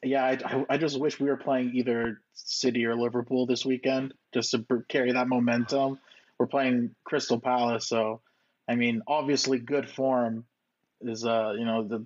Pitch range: 115-135 Hz